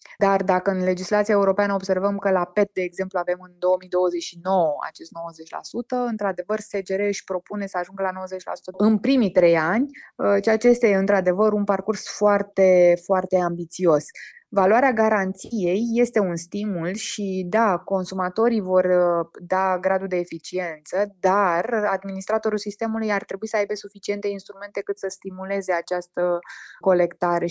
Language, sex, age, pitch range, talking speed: Romanian, female, 20-39, 175-200 Hz, 140 wpm